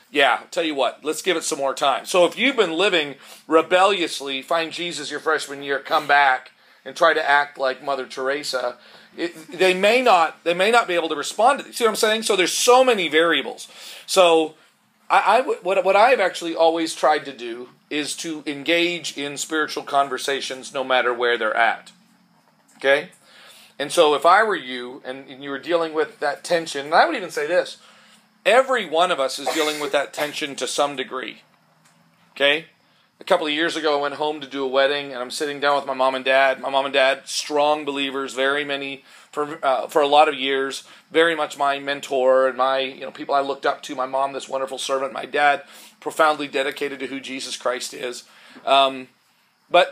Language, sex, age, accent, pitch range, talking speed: English, male, 40-59, American, 135-170 Hz, 210 wpm